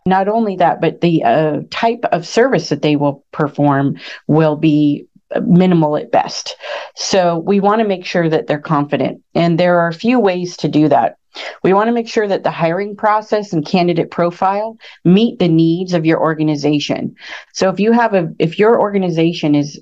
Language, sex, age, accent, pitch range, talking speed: English, female, 40-59, American, 150-185 Hz, 190 wpm